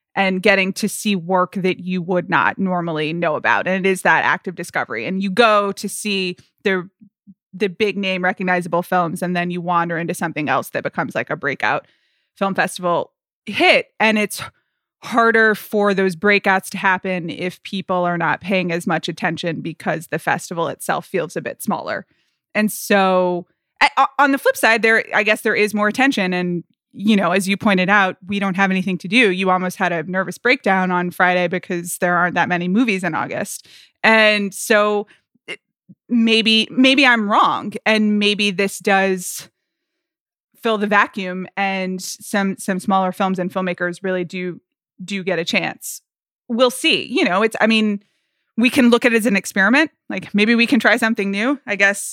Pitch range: 180-215 Hz